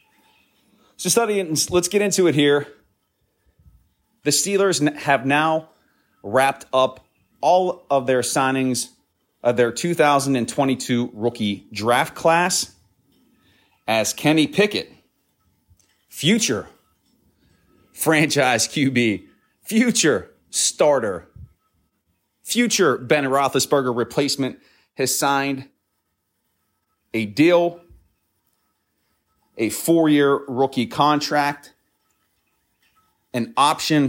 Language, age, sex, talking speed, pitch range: English, 30-49, male, 80 wpm, 115-150 Hz